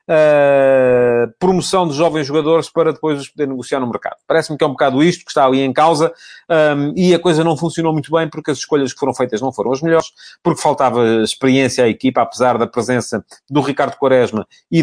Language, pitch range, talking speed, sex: English, 125-165 Hz, 215 wpm, male